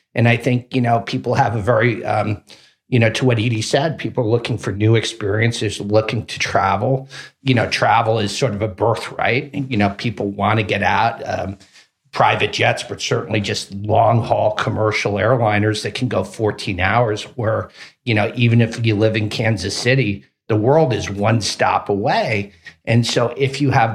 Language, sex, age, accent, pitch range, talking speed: English, male, 40-59, American, 105-130 Hz, 190 wpm